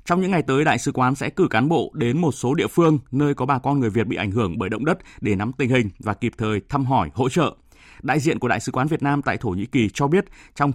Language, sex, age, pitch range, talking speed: Vietnamese, male, 20-39, 115-145 Hz, 300 wpm